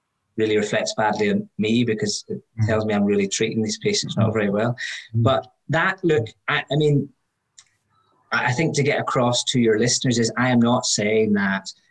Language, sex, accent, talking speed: English, male, British, 185 wpm